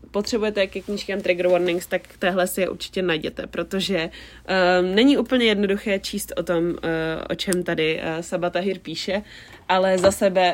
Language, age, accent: Czech, 20-39, native